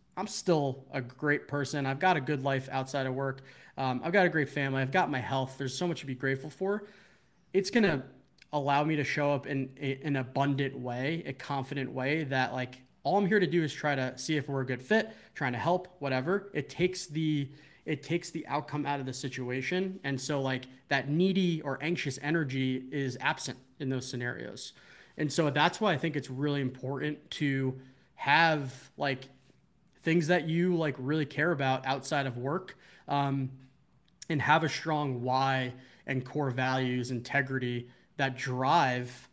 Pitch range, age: 130-150 Hz, 20-39